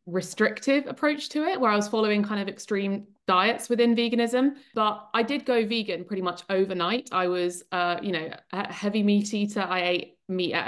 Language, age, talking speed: English, 20-39, 190 wpm